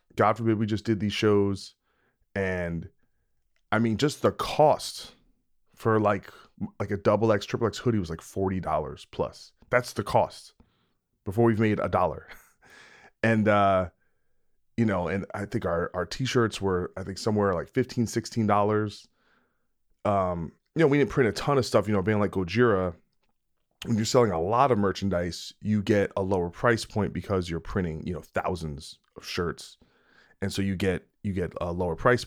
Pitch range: 90-115 Hz